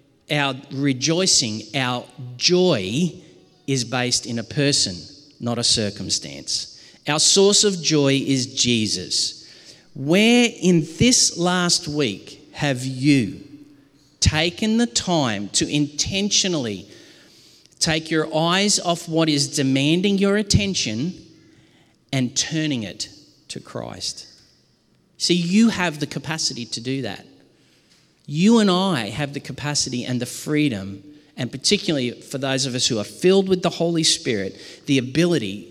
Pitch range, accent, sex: 125-170 Hz, Australian, male